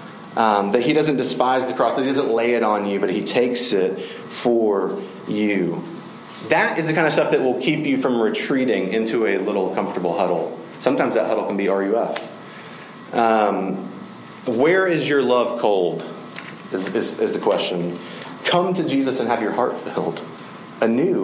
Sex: male